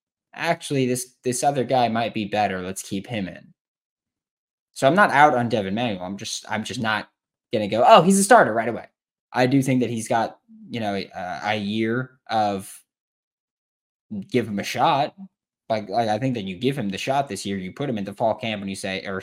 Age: 10-29